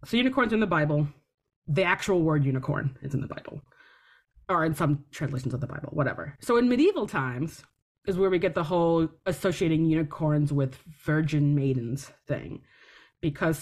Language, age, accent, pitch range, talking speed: English, 20-39, American, 145-180 Hz, 170 wpm